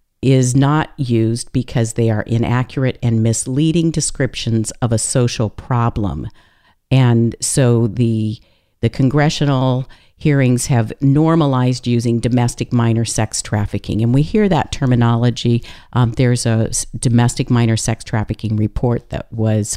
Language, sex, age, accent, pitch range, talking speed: English, female, 50-69, American, 110-135 Hz, 130 wpm